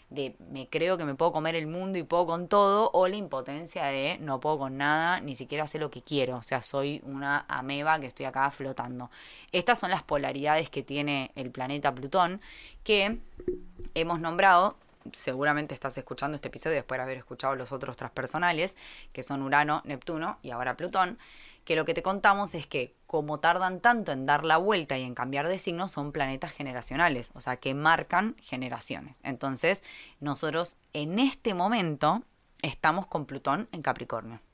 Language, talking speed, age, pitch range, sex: Spanish, 180 wpm, 10-29, 135-180 Hz, female